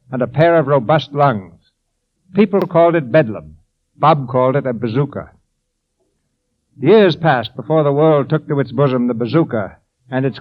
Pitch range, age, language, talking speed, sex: 120-160 Hz, 60-79, English, 160 wpm, male